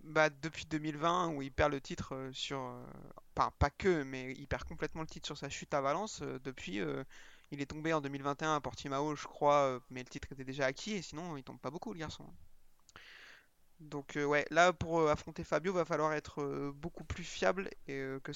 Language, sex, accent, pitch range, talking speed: French, male, French, 145-180 Hz, 200 wpm